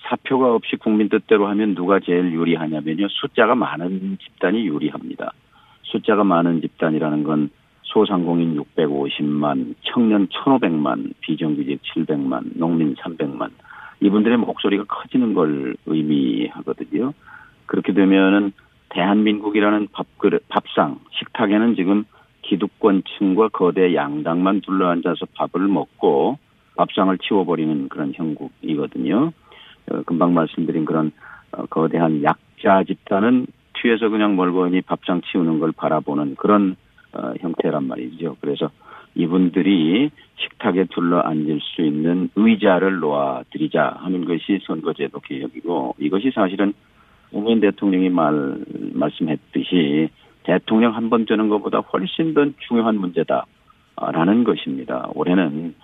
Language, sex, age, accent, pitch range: Korean, male, 40-59, native, 85-105 Hz